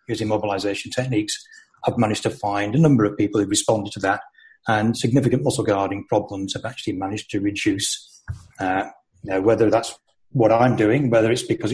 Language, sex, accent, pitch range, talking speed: English, male, British, 105-130 Hz, 180 wpm